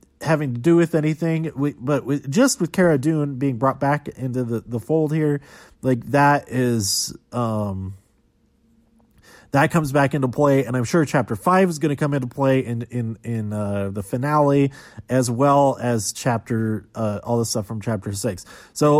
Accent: American